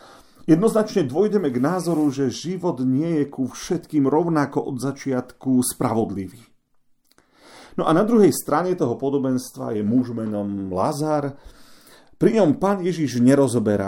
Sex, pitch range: male, 115-150 Hz